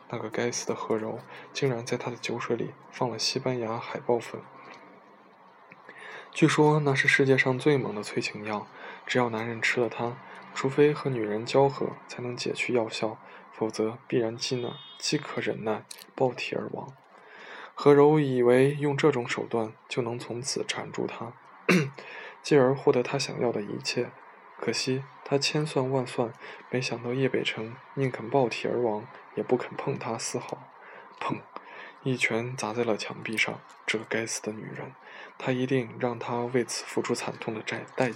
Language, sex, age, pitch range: Chinese, male, 20-39, 120-135 Hz